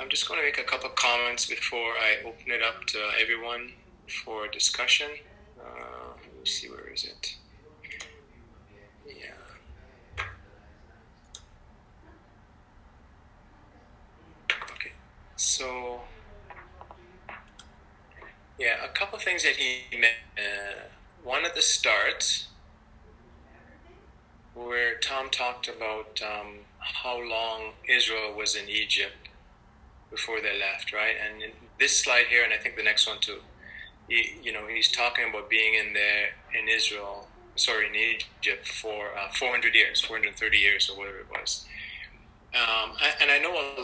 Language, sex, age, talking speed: English, male, 20-39, 140 wpm